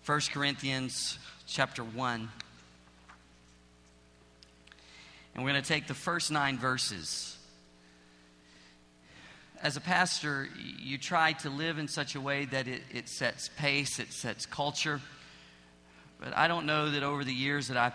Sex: male